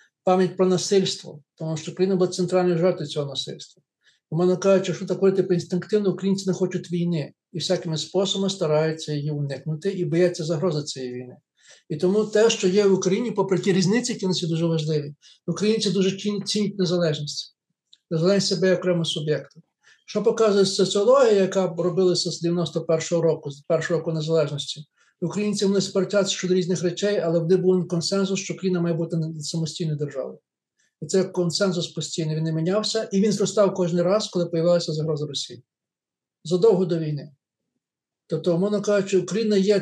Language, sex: Ukrainian, male